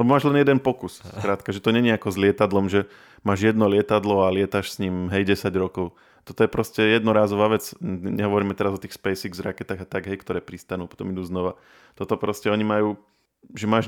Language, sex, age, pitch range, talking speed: Slovak, male, 20-39, 95-110 Hz, 210 wpm